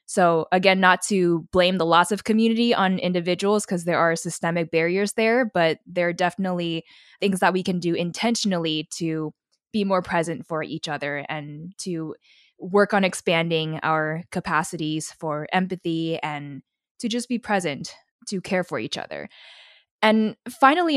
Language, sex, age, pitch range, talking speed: English, female, 20-39, 170-205 Hz, 155 wpm